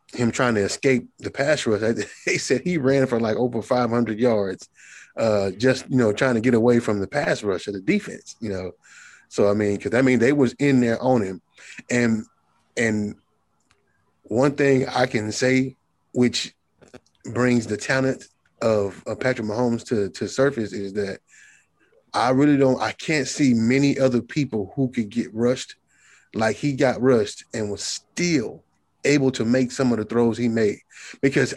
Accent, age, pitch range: American, 20-39, 115-135 Hz